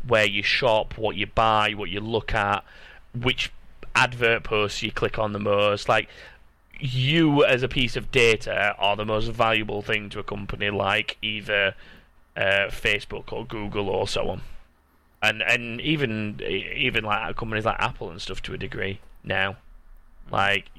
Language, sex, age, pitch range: English, male, 20-39, 100-120 Hz